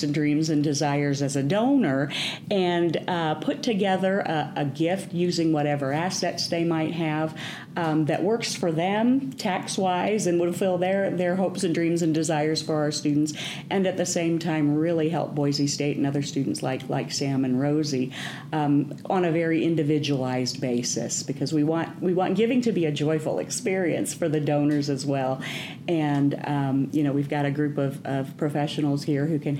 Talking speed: 185 wpm